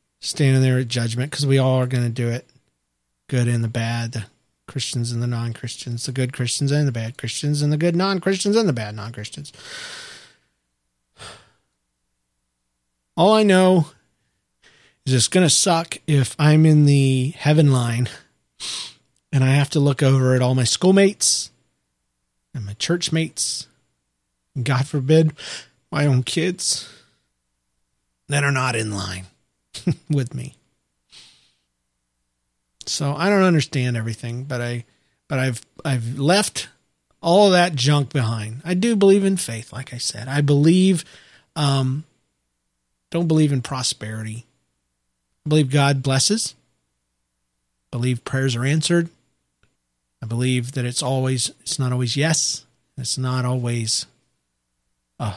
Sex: male